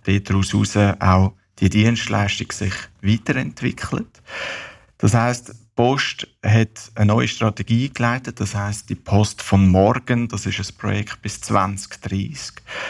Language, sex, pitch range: German, male, 100-115 Hz